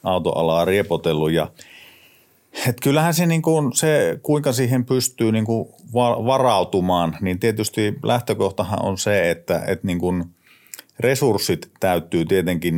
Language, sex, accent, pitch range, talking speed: Finnish, male, native, 95-115 Hz, 115 wpm